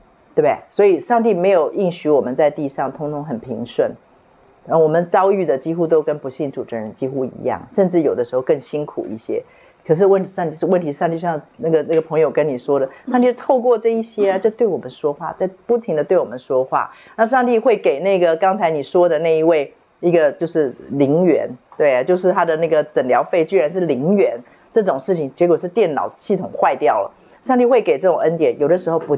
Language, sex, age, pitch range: Chinese, female, 50-69, 155-210 Hz